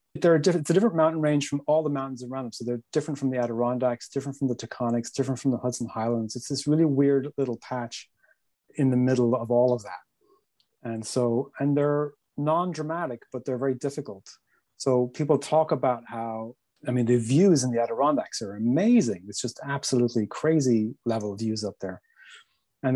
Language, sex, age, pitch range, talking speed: English, male, 30-49, 120-145 Hz, 195 wpm